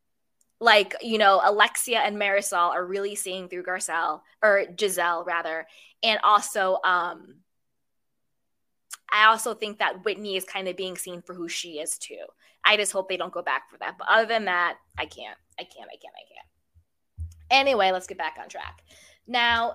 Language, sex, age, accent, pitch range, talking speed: English, female, 20-39, American, 180-270 Hz, 180 wpm